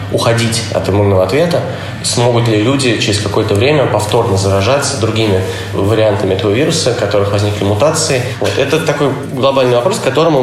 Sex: male